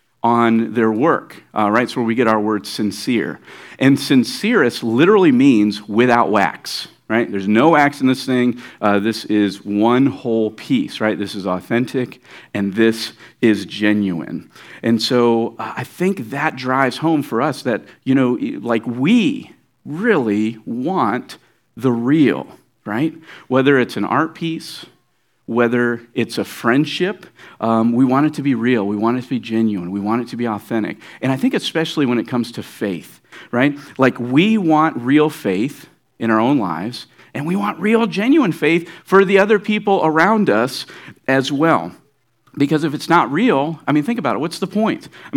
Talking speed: 175 wpm